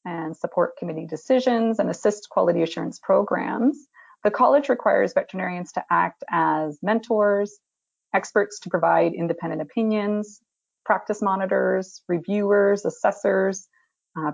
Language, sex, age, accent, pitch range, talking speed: English, female, 30-49, American, 175-225 Hz, 115 wpm